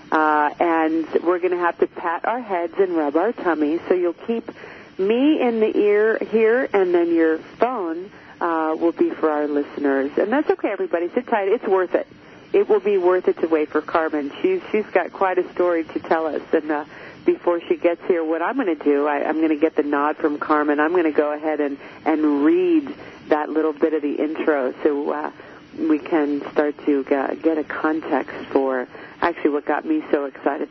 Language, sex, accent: English, female, American